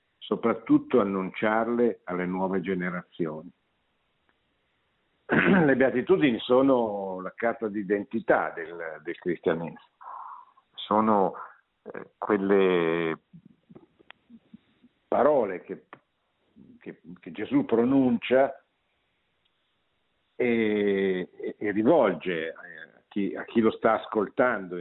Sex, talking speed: male, 75 wpm